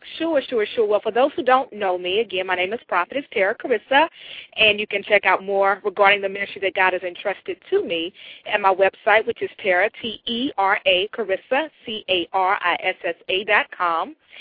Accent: American